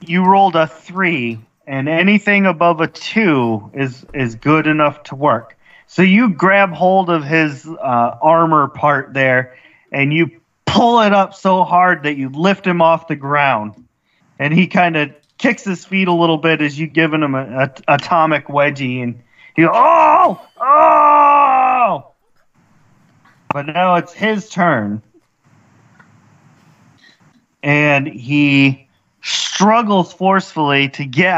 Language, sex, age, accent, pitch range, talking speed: English, male, 30-49, American, 135-180 Hz, 140 wpm